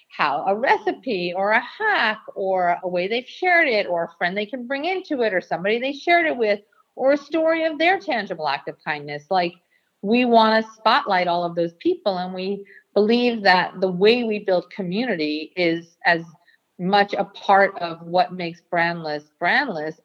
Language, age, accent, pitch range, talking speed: English, 50-69, American, 175-225 Hz, 190 wpm